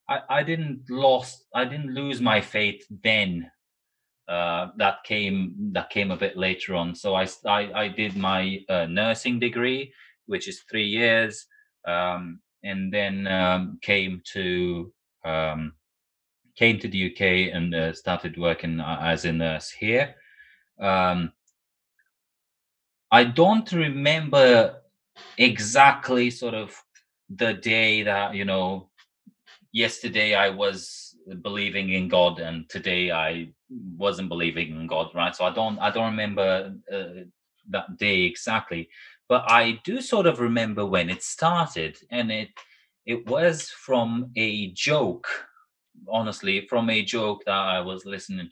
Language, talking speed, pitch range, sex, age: Hindi, 135 wpm, 90-120 Hz, male, 30-49